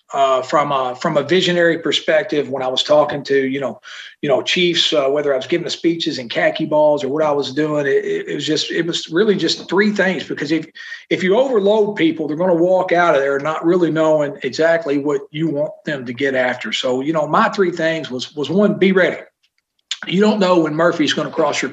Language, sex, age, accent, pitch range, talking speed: English, male, 40-59, American, 145-185 Hz, 240 wpm